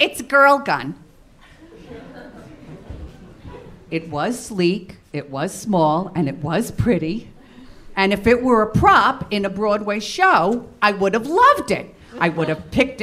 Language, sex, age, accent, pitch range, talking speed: English, female, 50-69, American, 210-330 Hz, 150 wpm